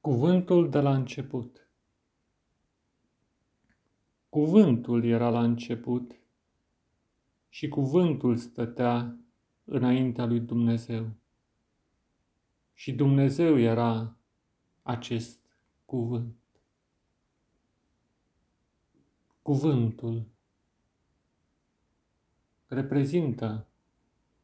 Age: 40-59